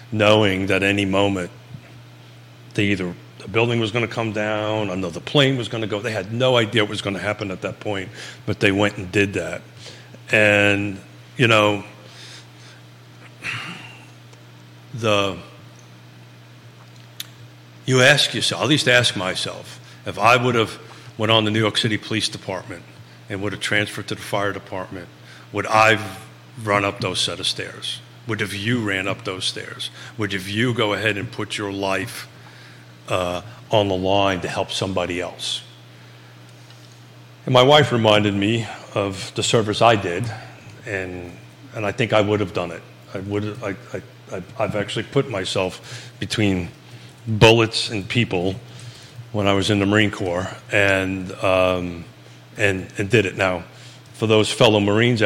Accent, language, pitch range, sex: American, English, 85-110 Hz, male